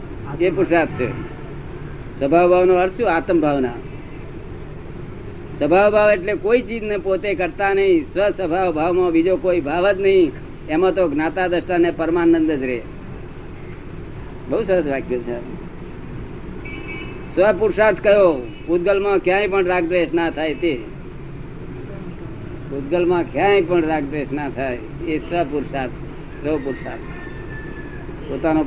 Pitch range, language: 150-205 Hz, Gujarati